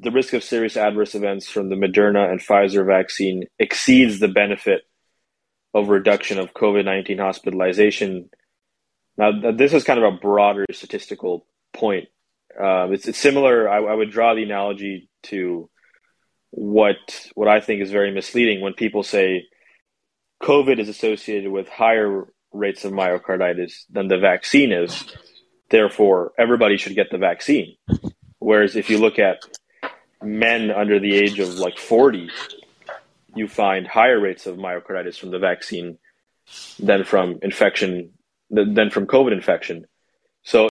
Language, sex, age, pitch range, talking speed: English, male, 20-39, 95-115 Hz, 145 wpm